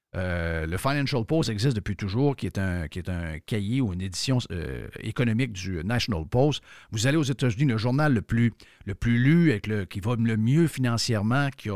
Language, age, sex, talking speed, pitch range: French, 50-69, male, 215 wpm, 105-145 Hz